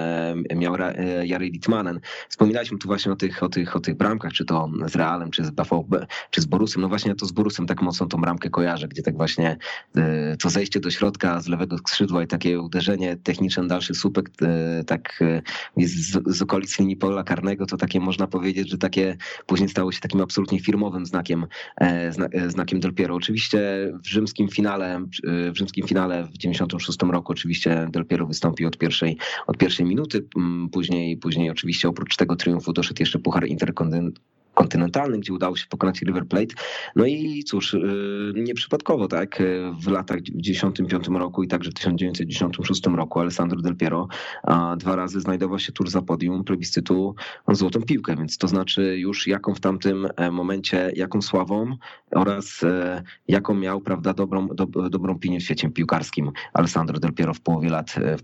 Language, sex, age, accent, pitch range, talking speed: Polish, male, 20-39, native, 85-95 Hz, 165 wpm